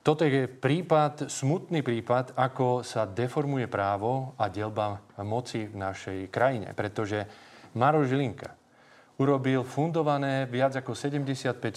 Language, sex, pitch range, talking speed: Slovak, male, 115-150 Hz, 110 wpm